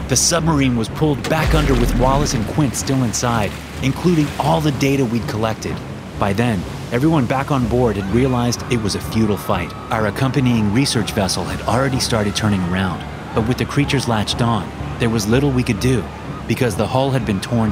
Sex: male